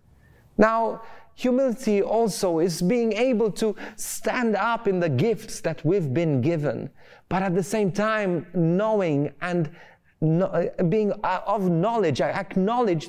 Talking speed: 135 wpm